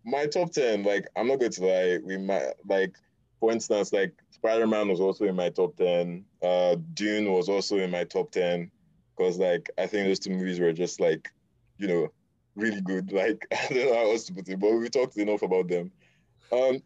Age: 20-39